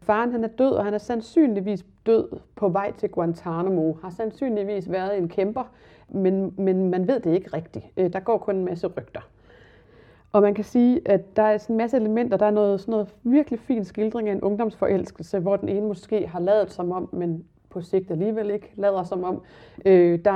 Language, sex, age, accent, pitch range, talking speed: Danish, female, 30-49, native, 175-210 Hz, 210 wpm